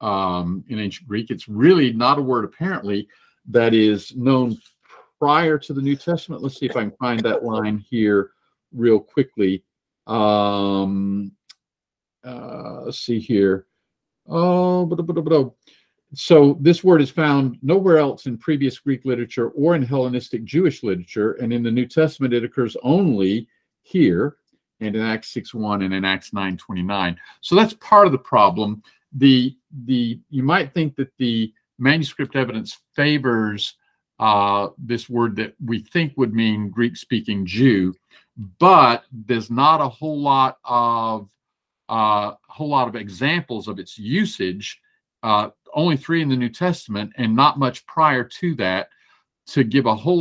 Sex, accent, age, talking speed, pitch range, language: male, American, 50-69, 155 wpm, 105-140 Hz, English